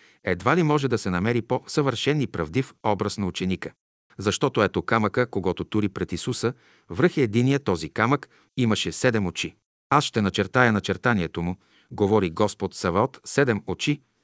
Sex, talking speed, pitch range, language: male, 150 wpm, 90-120 Hz, Bulgarian